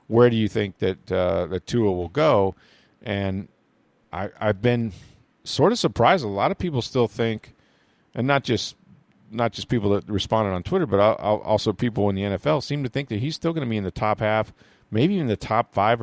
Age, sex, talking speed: 40-59, male, 215 wpm